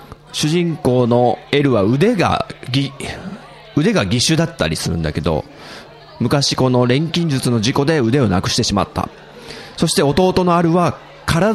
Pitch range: 120-175 Hz